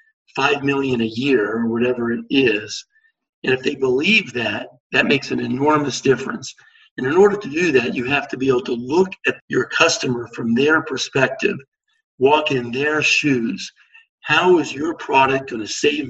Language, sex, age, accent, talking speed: English, male, 50-69, American, 180 wpm